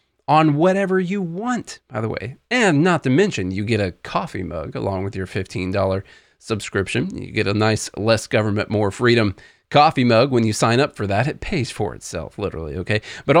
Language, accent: English, American